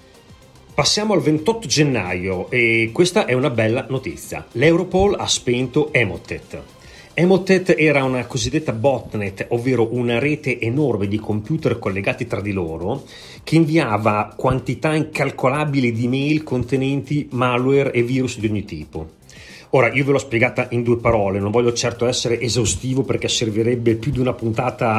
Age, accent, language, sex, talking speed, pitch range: 40-59, native, Italian, male, 145 wpm, 115-150 Hz